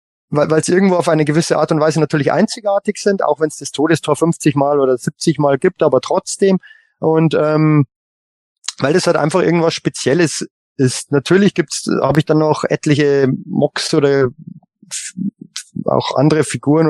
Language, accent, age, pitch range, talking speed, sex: German, German, 20-39, 140-170 Hz, 170 wpm, male